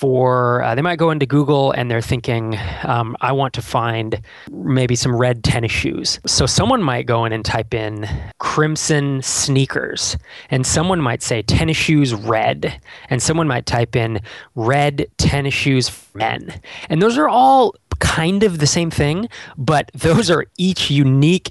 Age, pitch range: 20-39, 115-145 Hz